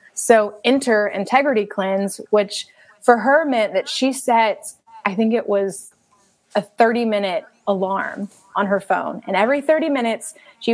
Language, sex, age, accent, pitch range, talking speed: English, female, 20-39, American, 195-230 Hz, 145 wpm